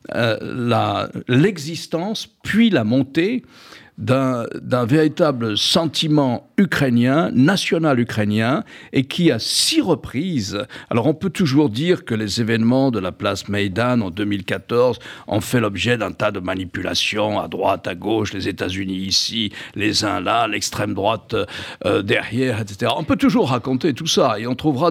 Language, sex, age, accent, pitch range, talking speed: French, male, 60-79, French, 110-160 Hz, 150 wpm